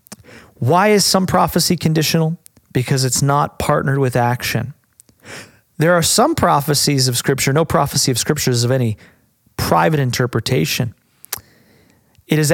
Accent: American